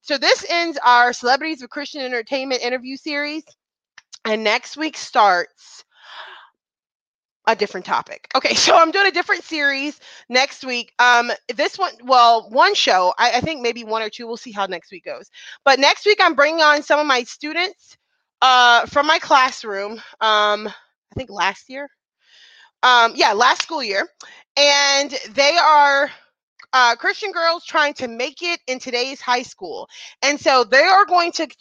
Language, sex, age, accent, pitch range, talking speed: English, female, 20-39, American, 240-320 Hz, 170 wpm